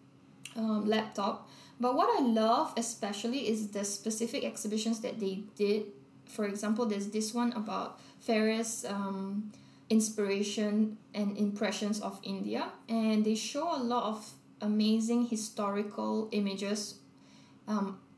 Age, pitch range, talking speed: 20-39, 205-230 Hz, 120 wpm